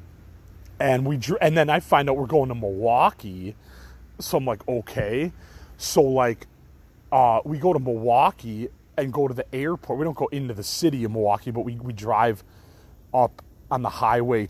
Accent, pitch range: American, 95-135 Hz